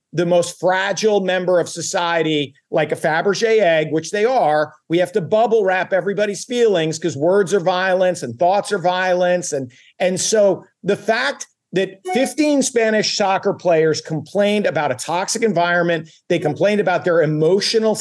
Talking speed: 160 wpm